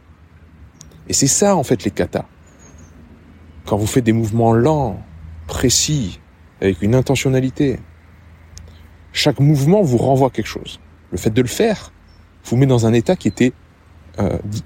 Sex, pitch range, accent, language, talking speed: male, 95-130 Hz, French, French, 145 wpm